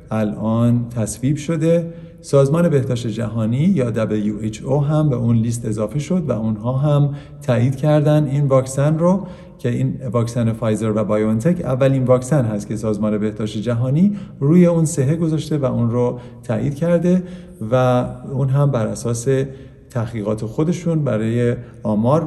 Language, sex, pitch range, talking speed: Persian, male, 110-155 Hz, 145 wpm